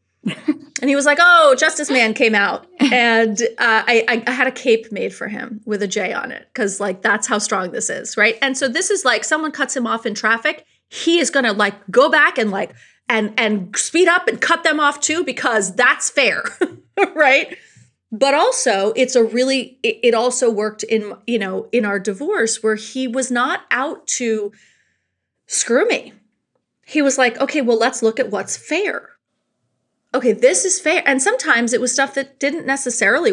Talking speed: 200 wpm